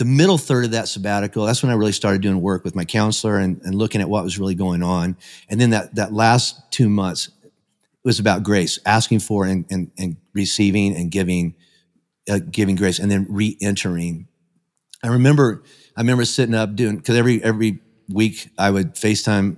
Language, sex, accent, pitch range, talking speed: English, male, American, 100-120 Hz, 195 wpm